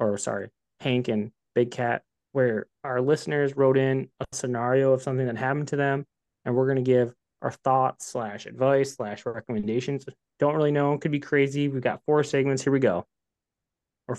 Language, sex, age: English, male, 20-39